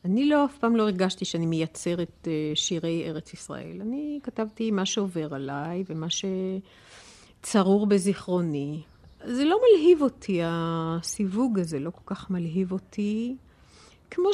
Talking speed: 130 wpm